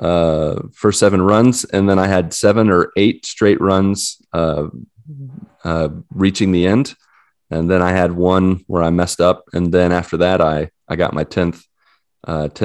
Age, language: 30-49, English